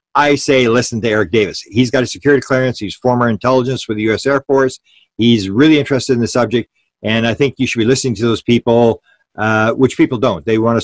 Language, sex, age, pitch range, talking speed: English, male, 50-69, 115-135 Hz, 235 wpm